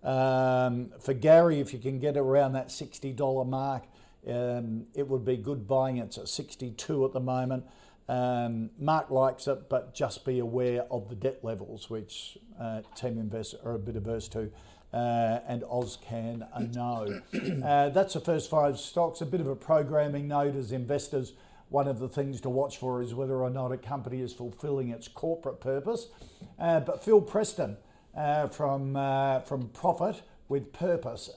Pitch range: 120-145 Hz